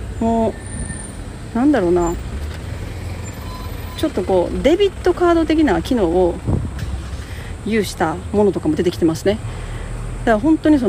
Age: 40-59